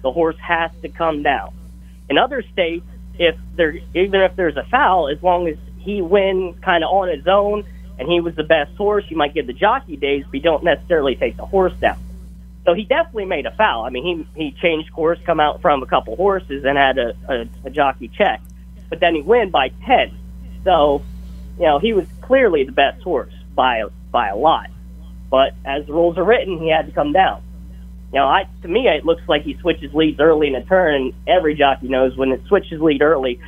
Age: 30-49